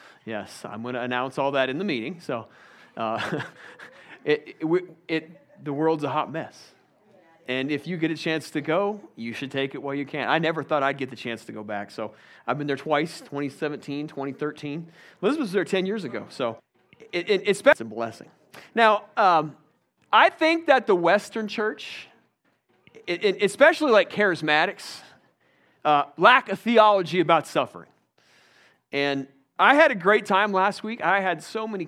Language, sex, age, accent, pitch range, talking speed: English, male, 40-59, American, 150-205 Hz, 180 wpm